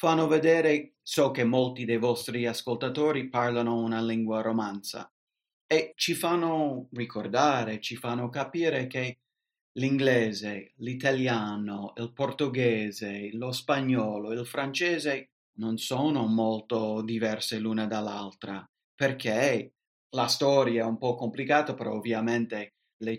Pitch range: 110-130 Hz